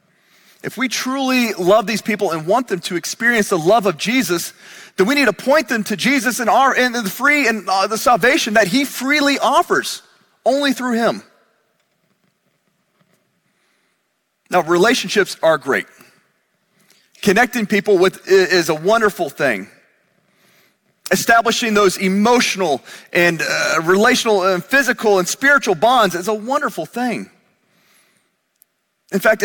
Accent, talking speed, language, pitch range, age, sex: American, 130 wpm, English, 190-235 Hz, 30-49, male